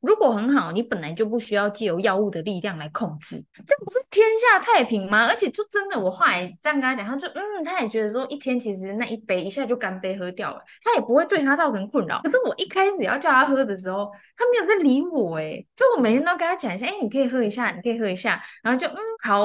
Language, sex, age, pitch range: Chinese, female, 20-39, 200-305 Hz